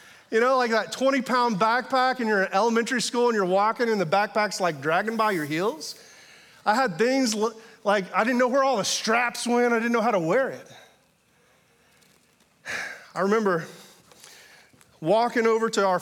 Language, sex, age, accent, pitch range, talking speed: English, male, 30-49, American, 180-255 Hz, 180 wpm